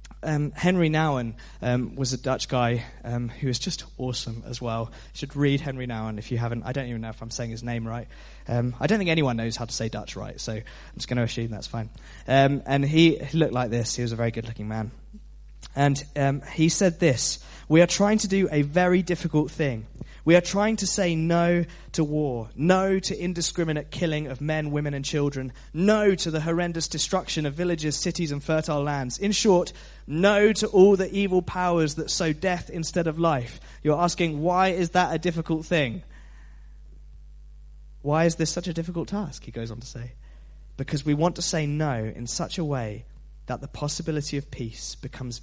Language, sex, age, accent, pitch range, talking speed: English, male, 20-39, British, 120-170 Hz, 205 wpm